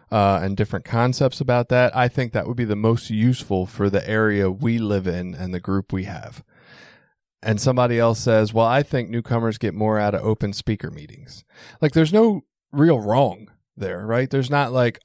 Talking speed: 200 wpm